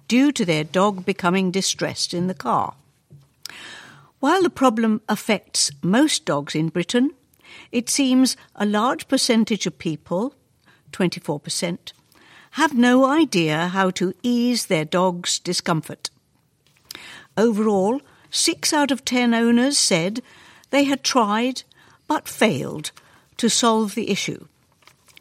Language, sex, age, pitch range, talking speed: English, female, 60-79, 180-260 Hz, 120 wpm